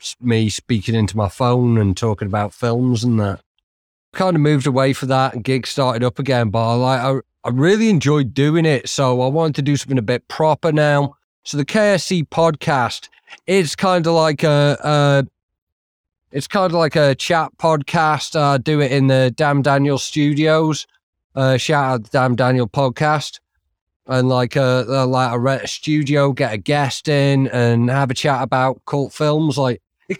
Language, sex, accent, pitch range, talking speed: English, male, British, 125-150 Hz, 185 wpm